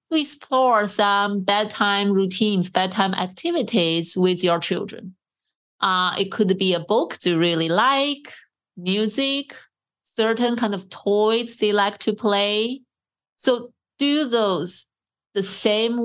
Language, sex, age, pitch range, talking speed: English, female, 30-49, 185-220 Hz, 120 wpm